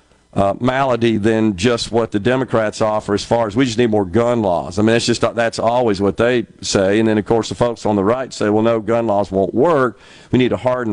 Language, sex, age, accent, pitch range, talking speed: English, male, 50-69, American, 105-125 Hz, 255 wpm